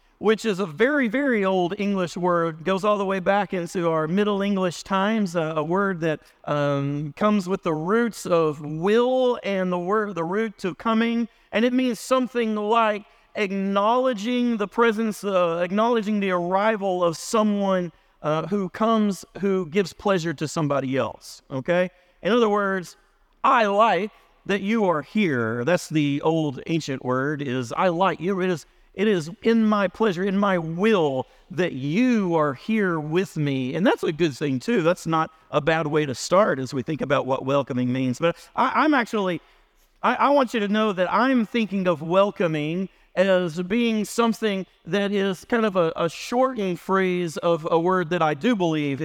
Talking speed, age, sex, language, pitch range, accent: 180 wpm, 40-59, male, English, 160-215 Hz, American